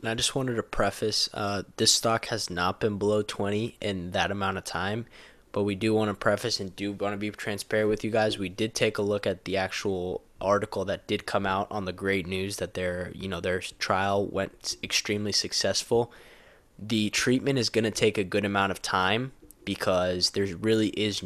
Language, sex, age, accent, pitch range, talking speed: English, male, 10-29, American, 95-110 Hz, 210 wpm